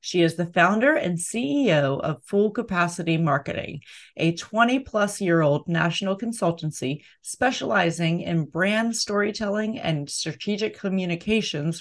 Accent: American